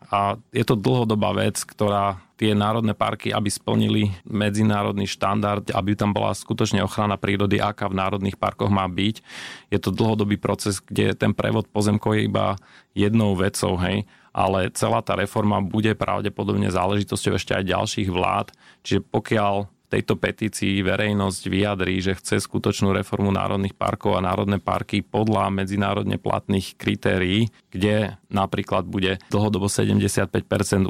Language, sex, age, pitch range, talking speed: Slovak, male, 30-49, 95-105 Hz, 140 wpm